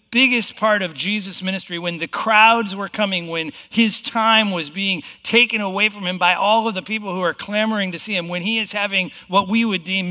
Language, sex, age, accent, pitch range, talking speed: English, male, 50-69, American, 140-190 Hz, 225 wpm